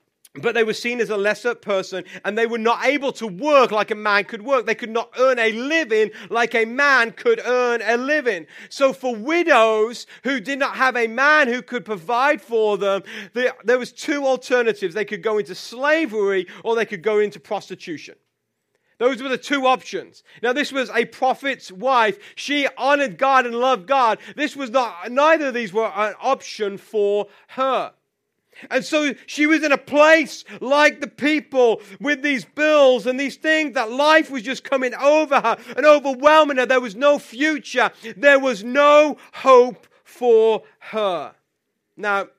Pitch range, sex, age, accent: 205-270 Hz, male, 40-59, British